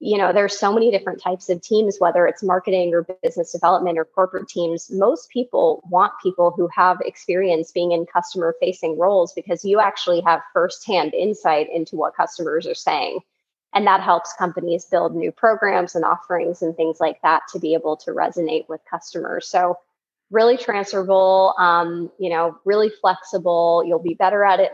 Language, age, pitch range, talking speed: English, 20-39, 170-195 Hz, 180 wpm